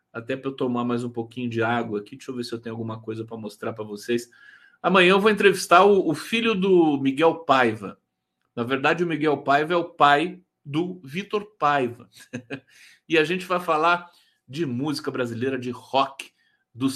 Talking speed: 190 wpm